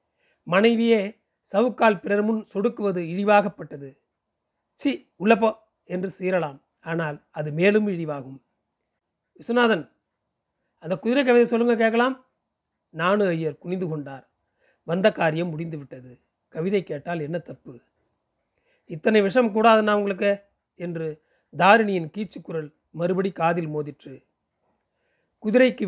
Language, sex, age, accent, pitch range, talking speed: Tamil, male, 40-59, native, 165-220 Hz, 95 wpm